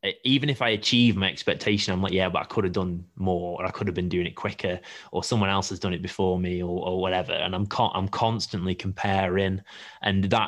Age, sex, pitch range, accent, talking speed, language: 20-39, male, 95-105 Hz, British, 240 wpm, English